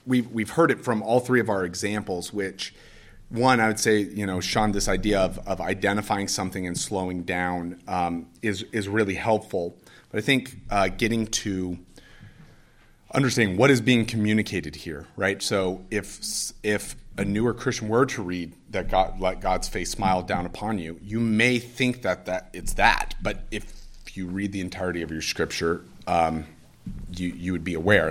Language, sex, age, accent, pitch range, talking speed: English, male, 30-49, American, 90-115 Hz, 180 wpm